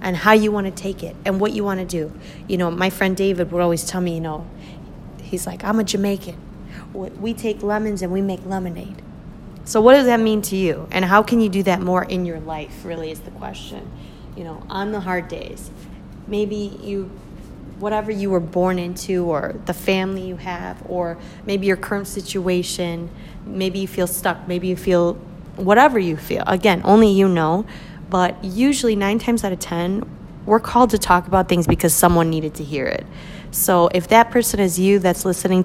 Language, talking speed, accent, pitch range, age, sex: English, 205 wpm, American, 180-210 Hz, 30-49, female